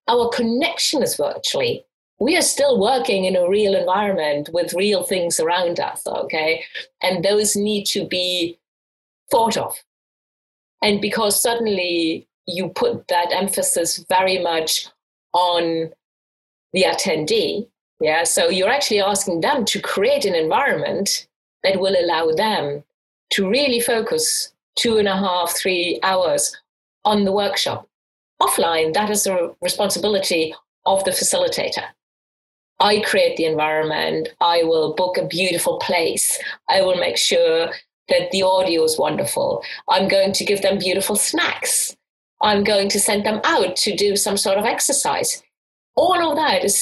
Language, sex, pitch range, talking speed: English, female, 180-265 Hz, 145 wpm